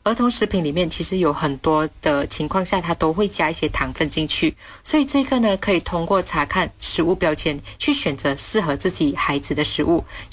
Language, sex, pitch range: Chinese, female, 155-195 Hz